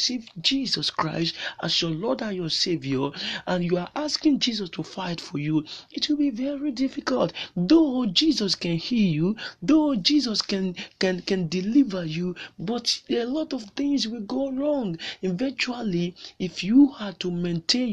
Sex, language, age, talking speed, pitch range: male, English, 40-59, 160 wpm, 175-265 Hz